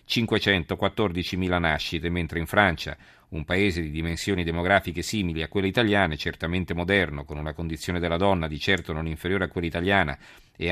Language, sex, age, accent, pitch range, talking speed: Italian, male, 50-69, native, 80-105 Hz, 155 wpm